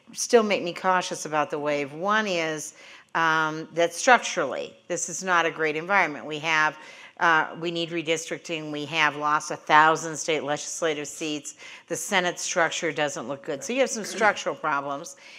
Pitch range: 155-185 Hz